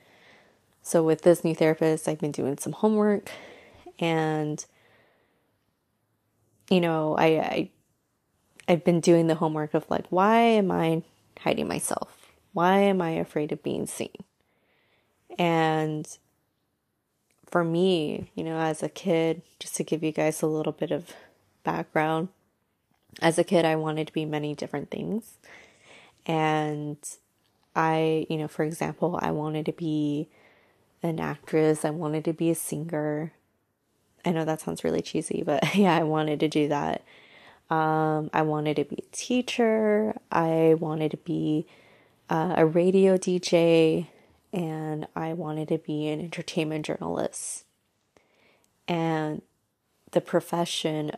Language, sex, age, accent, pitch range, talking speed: English, female, 20-39, American, 155-170 Hz, 140 wpm